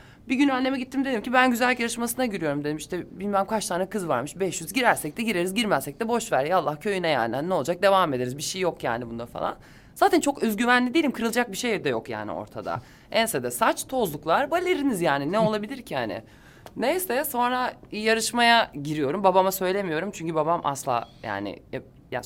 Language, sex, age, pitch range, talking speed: Turkish, male, 20-39, 145-235 Hz, 195 wpm